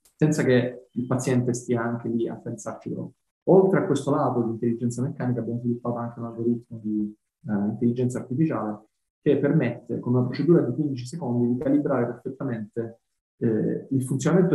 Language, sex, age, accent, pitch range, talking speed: Italian, male, 20-39, native, 120-150 Hz, 165 wpm